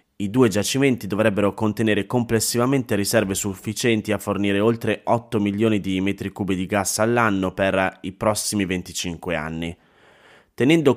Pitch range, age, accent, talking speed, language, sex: 95-115 Hz, 20-39, native, 135 wpm, Italian, male